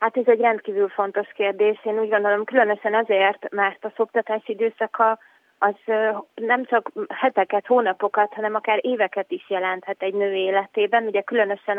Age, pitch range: 30-49, 200-230 Hz